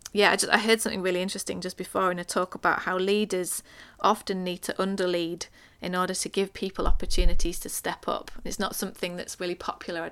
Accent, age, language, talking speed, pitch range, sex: British, 30-49, English, 215 wpm, 170-190 Hz, female